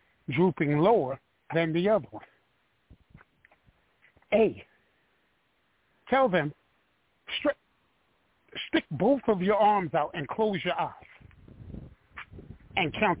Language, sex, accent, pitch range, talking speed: English, male, American, 145-190 Hz, 95 wpm